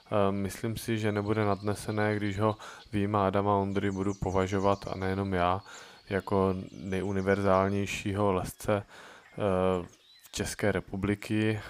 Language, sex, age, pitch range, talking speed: Czech, male, 20-39, 90-100 Hz, 110 wpm